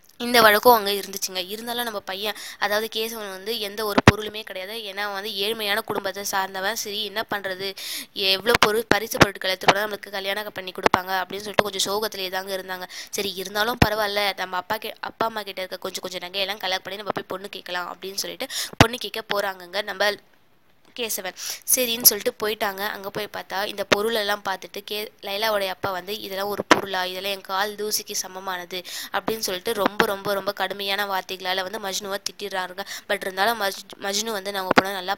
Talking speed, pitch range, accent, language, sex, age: 115 wpm, 190-210 Hz, native, Tamil, female, 20-39